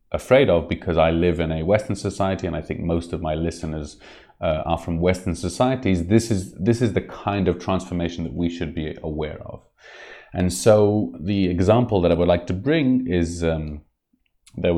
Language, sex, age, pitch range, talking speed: English, male, 30-49, 80-95 Hz, 195 wpm